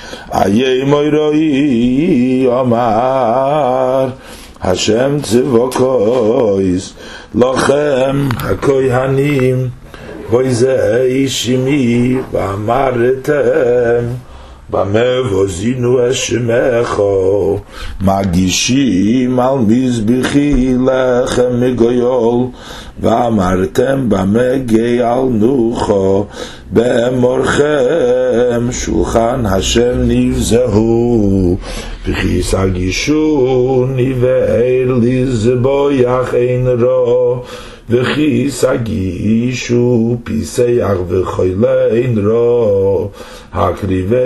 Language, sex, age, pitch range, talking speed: English, male, 50-69, 115-130 Hz, 40 wpm